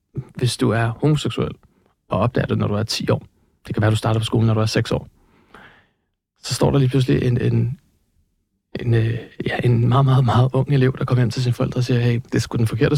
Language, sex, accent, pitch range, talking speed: Danish, male, native, 115-135 Hz, 245 wpm